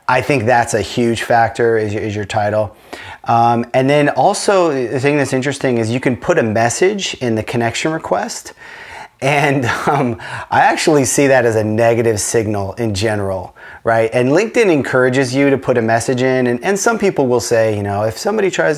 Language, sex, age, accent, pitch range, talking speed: English, male, 30-49, American, 110-140 Hz, 195 wpm